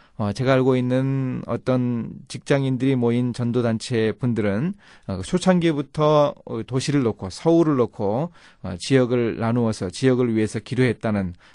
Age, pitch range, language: 30-49, 105-140 Hz, Korean